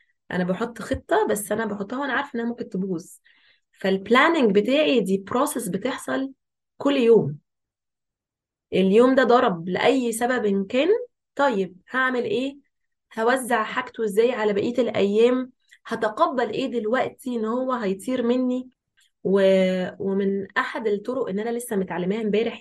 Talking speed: 125 wpm